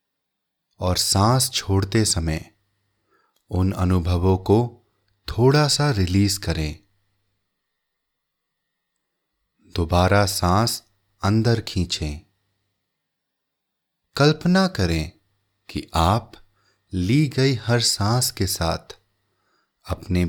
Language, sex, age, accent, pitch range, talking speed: English, male, 30-49, Indian, 95-110 Hz, 75 wpm